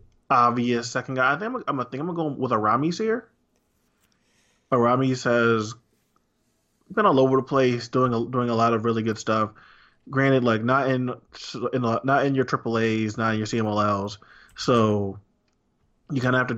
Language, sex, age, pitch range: English, male, 20-39, 110-125 Hz